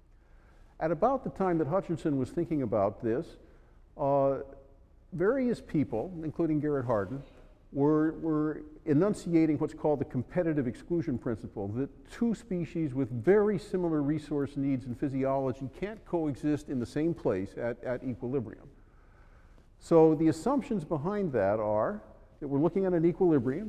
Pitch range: 125-170 Hz